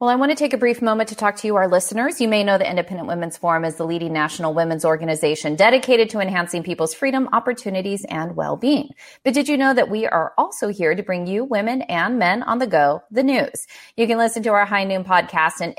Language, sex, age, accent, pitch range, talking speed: English, female, 30-49, American, 170-225 Hz, 245 wpm